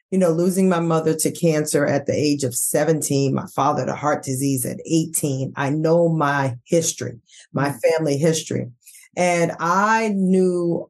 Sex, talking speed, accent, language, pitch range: female, 160 wpm, American, English, 155-190 Hz